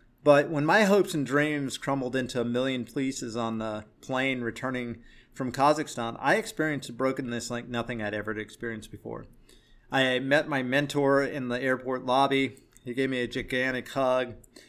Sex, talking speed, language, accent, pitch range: male, 170 wpm, English, American, 120-150 Hz